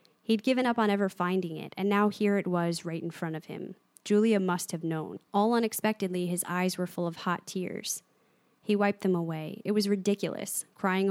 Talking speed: 205 wpm